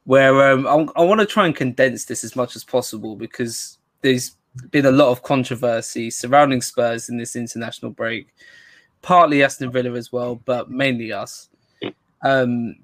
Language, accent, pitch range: English, British, 125-135 Hz